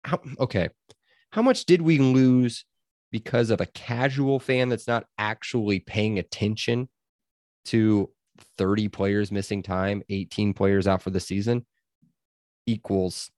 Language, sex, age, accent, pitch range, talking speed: English, male, 20-39, American, 100-130 Hz, 125 wpm